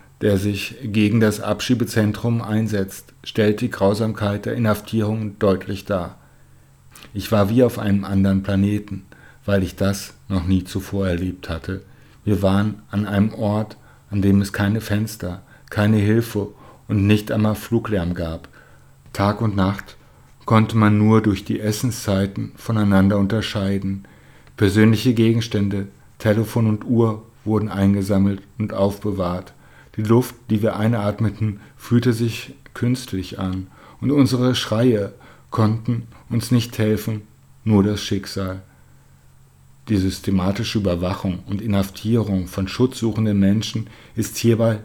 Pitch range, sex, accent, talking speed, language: 100-115 Hz, male, German, 125 wpm, German